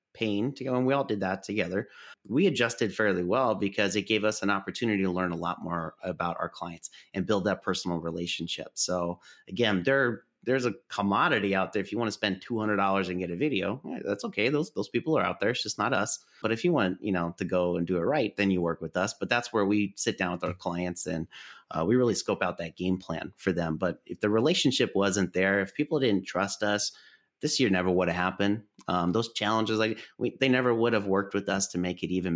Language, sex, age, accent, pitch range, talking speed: English, male, 30-49, American, 95-125 Hz, 245 wpm